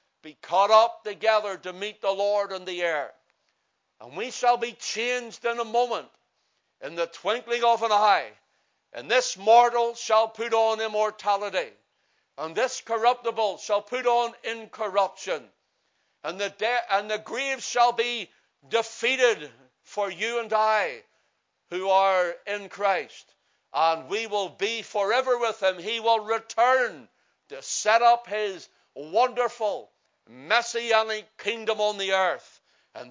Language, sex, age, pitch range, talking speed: English, male, 60-79, 200-235 Hz, 140 wpm